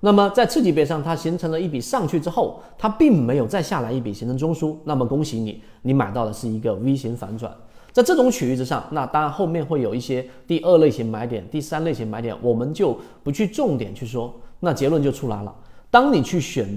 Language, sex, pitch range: Chinese, male, 120-165 Hz